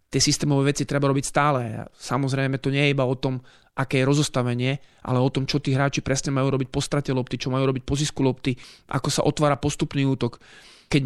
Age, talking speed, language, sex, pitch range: 30-49, 215 wpm, Slovak, male, 135-150 Hz